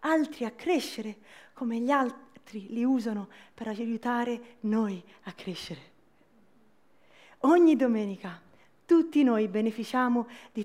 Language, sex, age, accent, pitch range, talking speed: Italian, female, 30-49, native, 220-290 Hz, 105 wpm